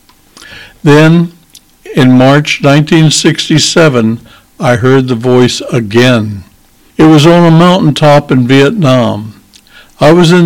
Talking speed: 110 wpm